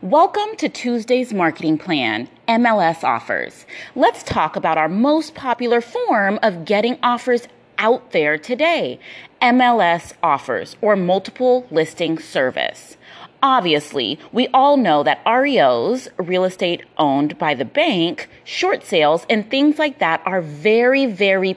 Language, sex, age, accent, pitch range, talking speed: English, female, 30-49, American, 175-260 Hz, 130 wpm